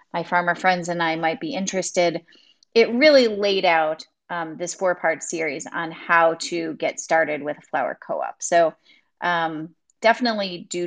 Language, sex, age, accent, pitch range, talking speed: English, female, 30-49, American, 165-225 Hz, 160 wpm